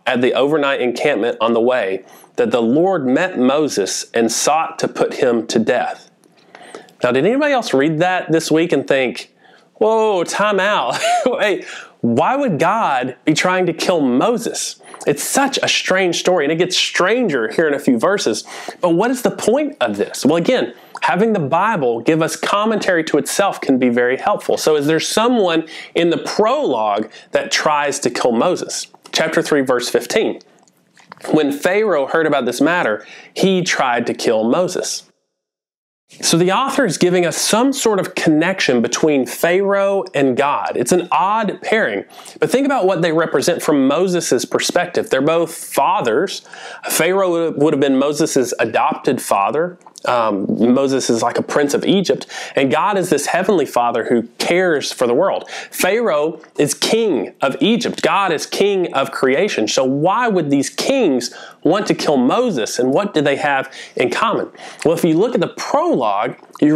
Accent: American